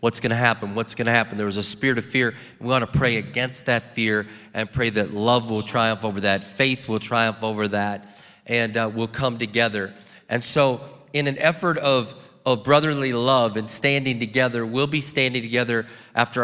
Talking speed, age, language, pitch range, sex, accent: 195 wpm, 30-49, English, 115-150 Hz, male, American